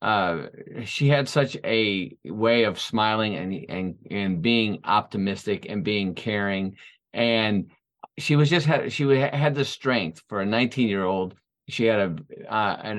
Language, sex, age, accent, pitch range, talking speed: English, male, 40-59, American, 110-135 Hz, 160 wpm